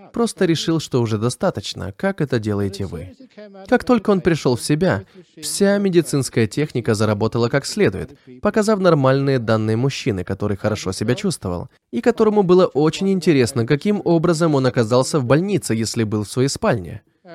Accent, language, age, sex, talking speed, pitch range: native, Russian, 20-39, male, 155 wpm, 115-185 Hz